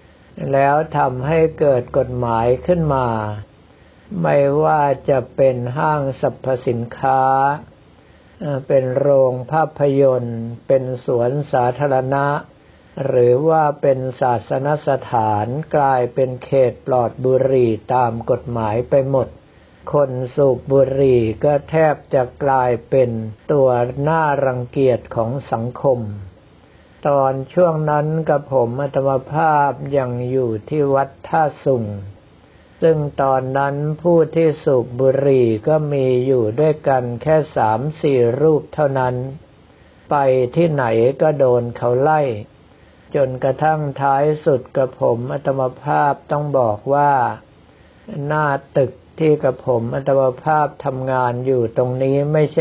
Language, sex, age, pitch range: Thai, male, 60-79, 125-145 Hz